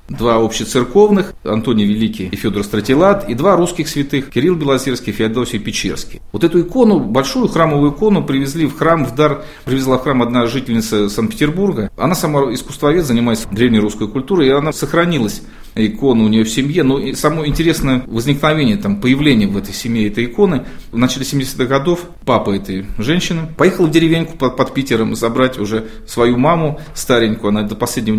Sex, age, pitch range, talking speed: male, 40-59, 115-160 Hz, 170 wpm